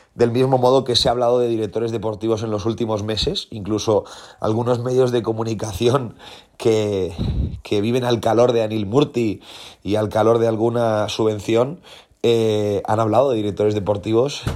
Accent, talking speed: Spanish, 160 wpm